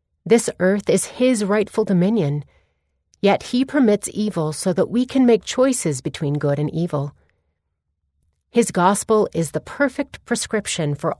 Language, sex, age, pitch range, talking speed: English, female, 30-49, 150-215 Hz, 145 wpm